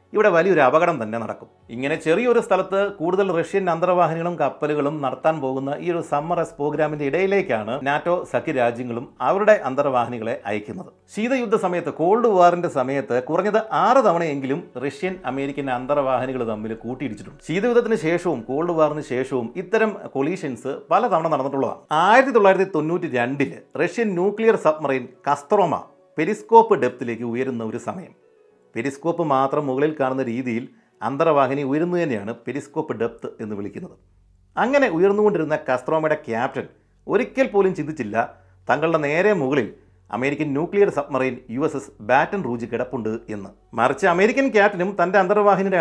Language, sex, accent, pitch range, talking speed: Malayalam, male, native, 125-185 Hz, 120 wpm